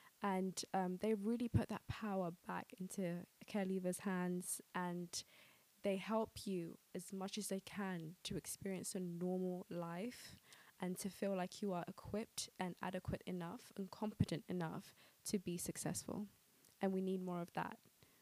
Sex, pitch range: female, 180-205 Hz